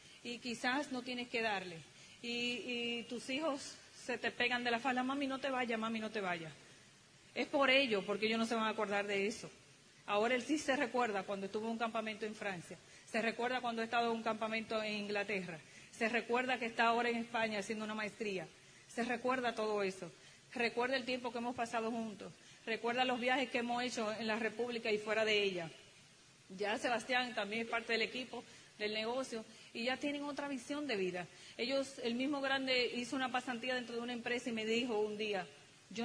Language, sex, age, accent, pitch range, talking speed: English, female, 30-49, American, 205-245 Hz, 205 wpm